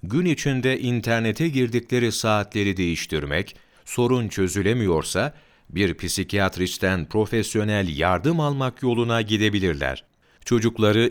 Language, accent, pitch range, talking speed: Turkish, native, 95-120 Hz, 85 wpm